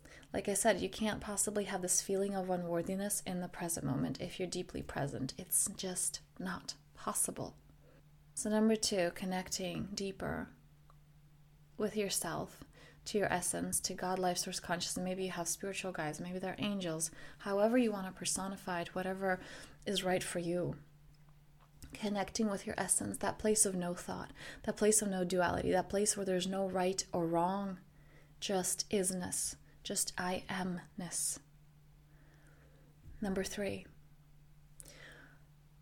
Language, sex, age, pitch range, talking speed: English, female, 20-39, 170-215 Hz, 145 wpm